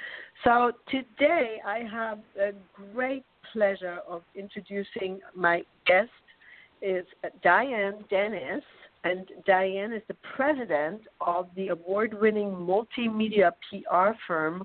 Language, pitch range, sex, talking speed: English, 185-240 Hz, female, 100 wpm